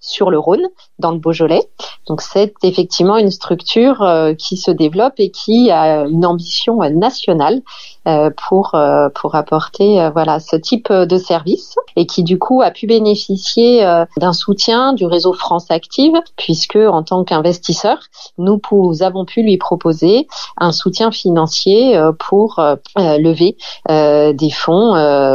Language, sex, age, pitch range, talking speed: French, female, 30-49, 170-220 Hz, 160 wpm